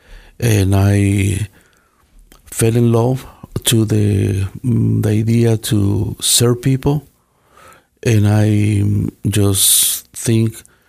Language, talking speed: English, 90 wpm